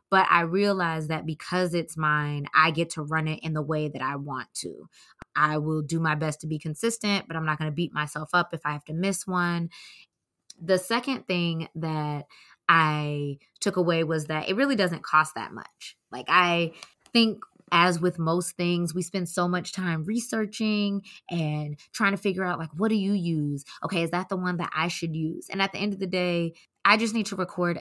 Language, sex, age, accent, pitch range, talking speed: English, female, 20-39, American, 155-180 Hz, 215 wpm